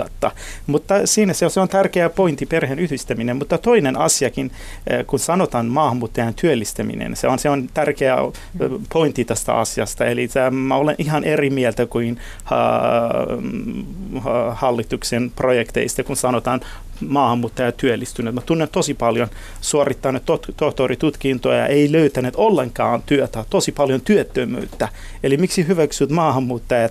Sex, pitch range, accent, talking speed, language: male, 120-155 Hz, native, 120 wpm, Finnish